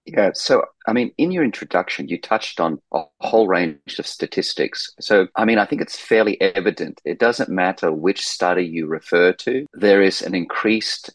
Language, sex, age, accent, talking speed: English, male, 30-49, Australian, 190 wpm